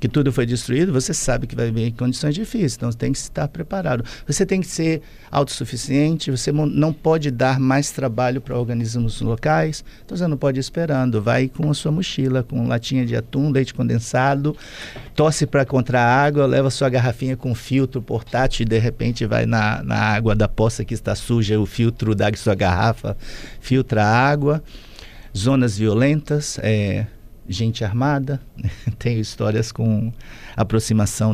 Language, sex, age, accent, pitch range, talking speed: Portuguese, male, 50-69, Brazilian, 115-145 Hz, 170 wpm